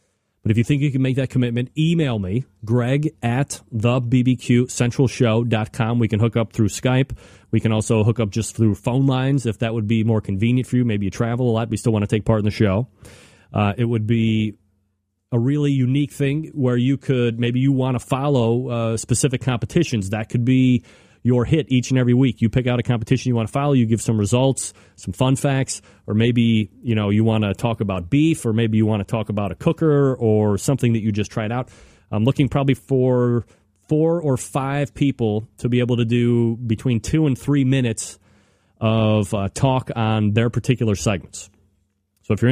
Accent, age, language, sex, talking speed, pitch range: American, 30-49, English, male, 215 wpm, 110-130 Hz